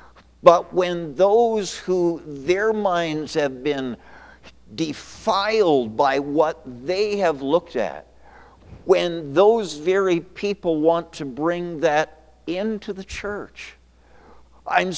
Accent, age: American, 50-69